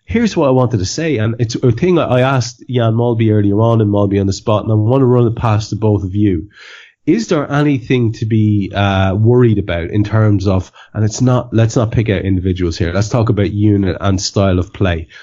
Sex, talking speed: male, 235 wpm